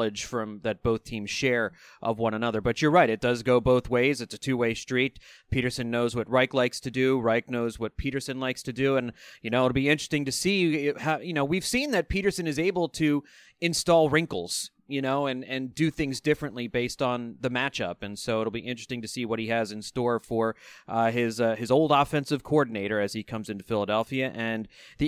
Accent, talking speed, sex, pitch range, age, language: American, 220 wpm, male, 125-165 Hz, 30-49, English